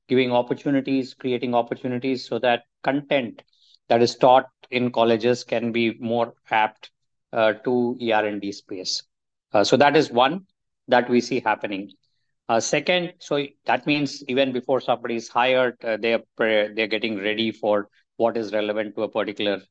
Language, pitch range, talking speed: English, 105-125 Hz, 160 wpm